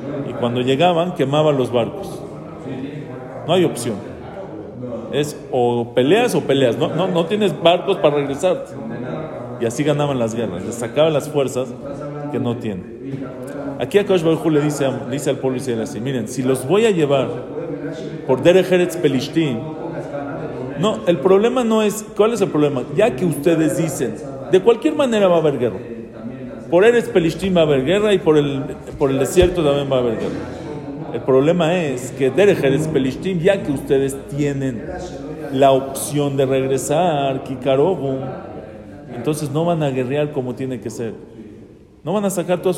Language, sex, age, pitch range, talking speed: English, male, 40-59, 130-180 Hz, 170 wpm